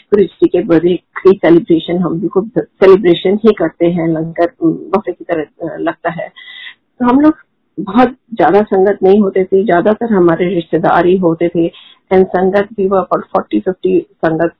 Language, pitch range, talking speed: Hindi, 170-215 Hz, 130 wpm